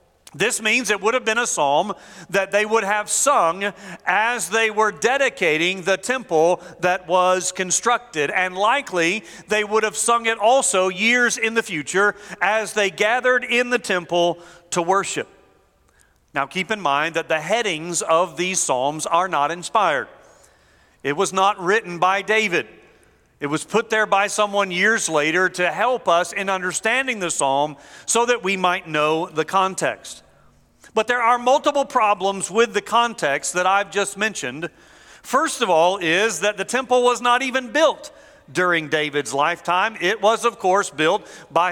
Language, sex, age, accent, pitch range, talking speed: English, male, 40-59, American, 175-230 Hz, 165 wpm